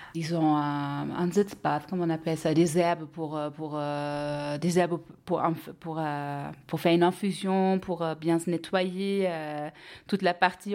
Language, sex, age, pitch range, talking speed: French, female, 30-49, 155-180 Hz, 165 wpm